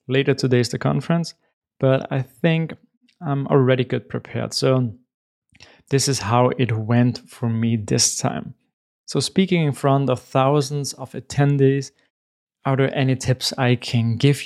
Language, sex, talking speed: English, male, 150 wpm